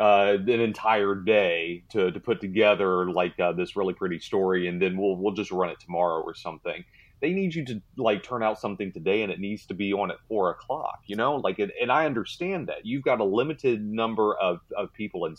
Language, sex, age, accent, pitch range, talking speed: English, male, 30-49, American, 95-125 Hz, 230 wpm